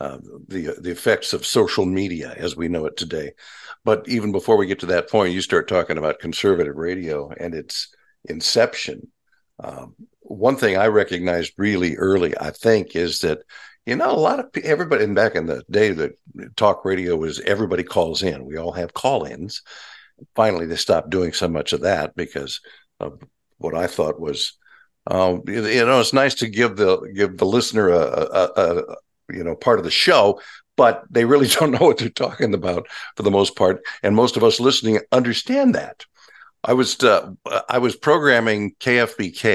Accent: American